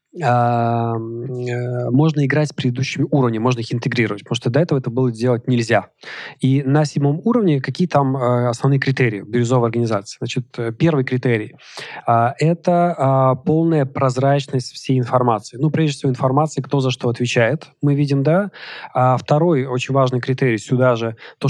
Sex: male